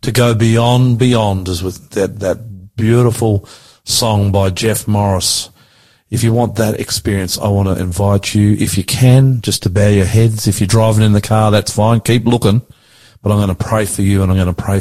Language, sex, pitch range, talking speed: English, male, 95-115 Hz, 215 wpm